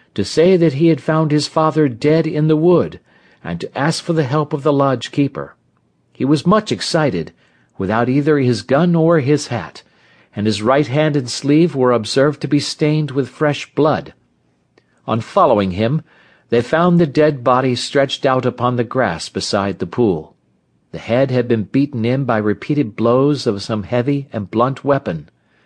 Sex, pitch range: male, 110-150 Hz